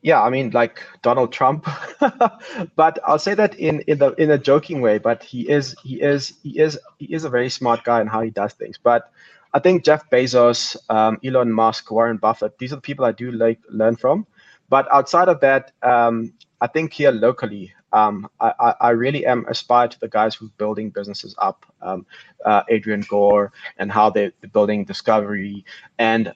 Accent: South African